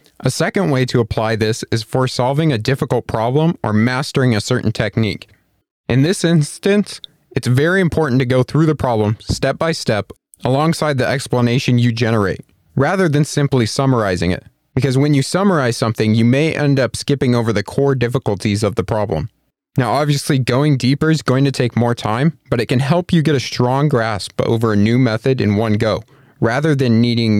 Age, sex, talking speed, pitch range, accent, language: 30-49, male, 190 wpm, 115-150 Hz, American, English